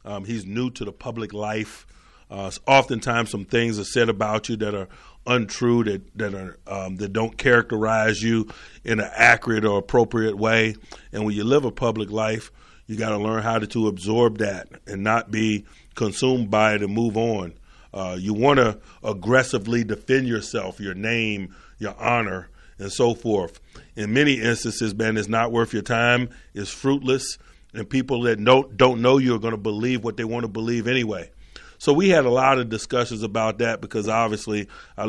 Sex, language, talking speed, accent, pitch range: male, English, 190 wpm, American, 105-120 Hz